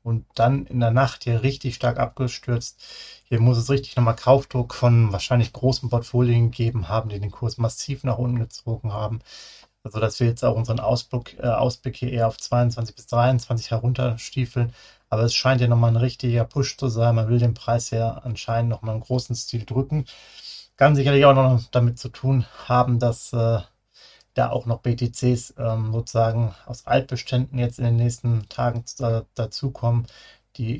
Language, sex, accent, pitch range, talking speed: German, male, German, 115-125 Hz, 180 wpm